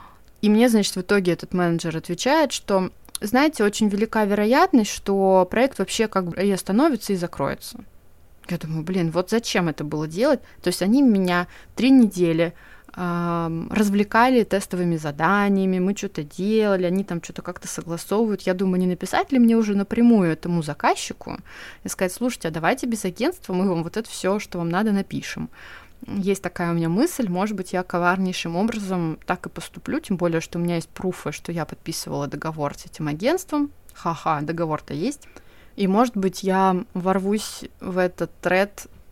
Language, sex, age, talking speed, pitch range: Russian, female, 20-39, 170 wpm, 175-220 Hz